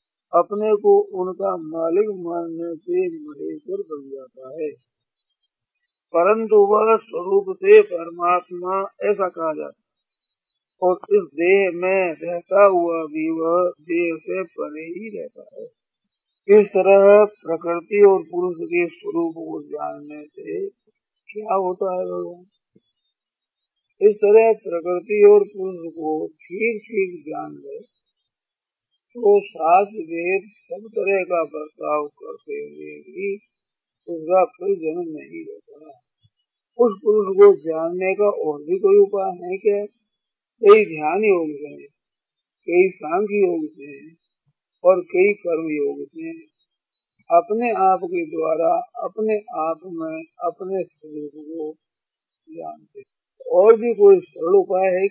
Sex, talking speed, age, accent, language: male, 120 wpm, 50-69, native, Hindi